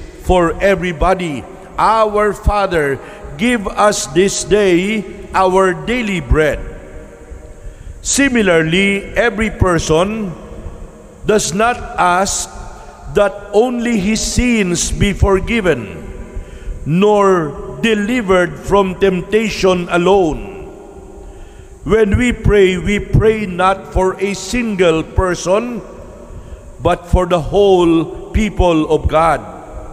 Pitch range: 160-205 Hz